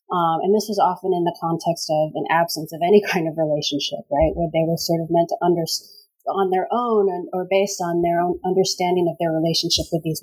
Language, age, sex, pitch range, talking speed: English, 30-49, female, 165-195 Hz, 235 wpm